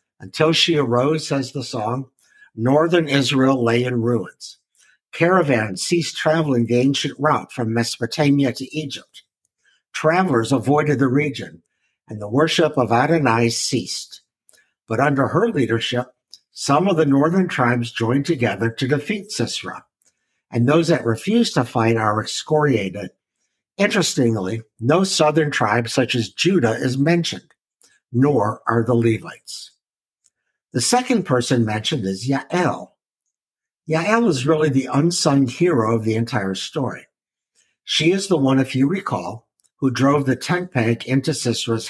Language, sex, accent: English, male, American